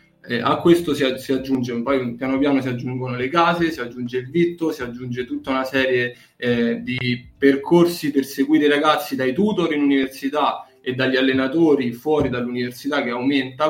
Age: 20-39